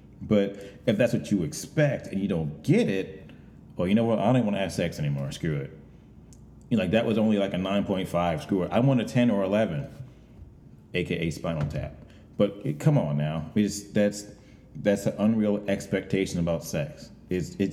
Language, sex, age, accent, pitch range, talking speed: English, male, 30-49, American, 90-115 Hz, 175 wpm